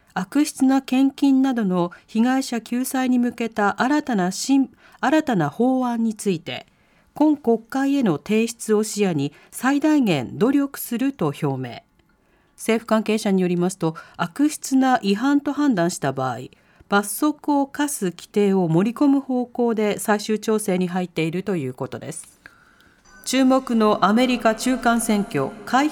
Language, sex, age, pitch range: Japanese, female, 40-59, 185-260 Hz